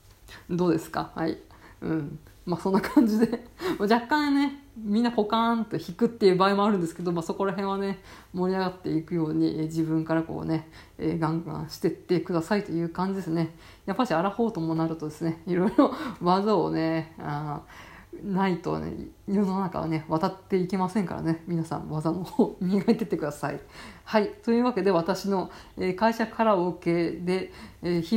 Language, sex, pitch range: Japanese, female, 165-220 Hz